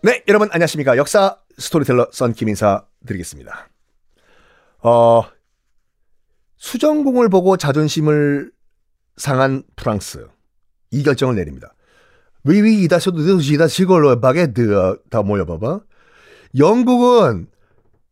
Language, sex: Korean, male